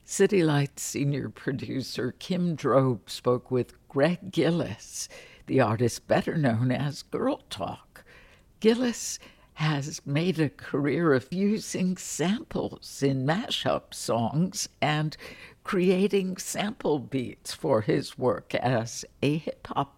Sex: female